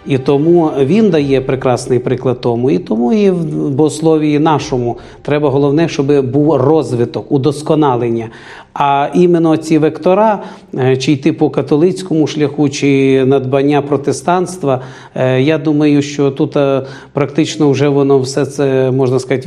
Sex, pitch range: male, 135-155 Hz